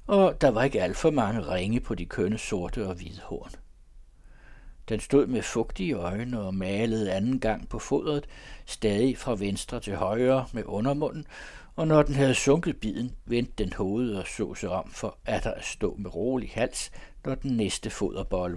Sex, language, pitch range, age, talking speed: male, Danish, 95-135 Hz, 60-79, 180 wpm